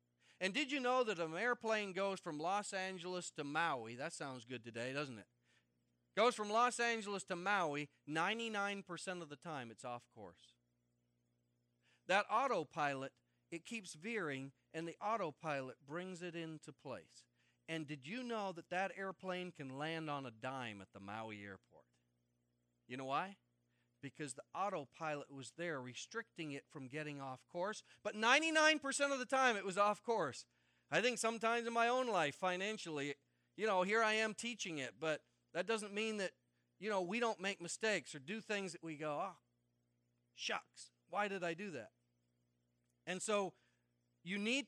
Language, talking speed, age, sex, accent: English, 170 wpm, 40-59, male, American